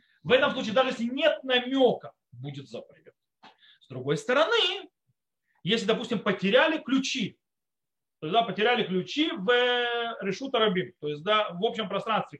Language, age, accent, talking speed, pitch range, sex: Russian, 30-49, native, 130 wpm, 185-255 Hz, male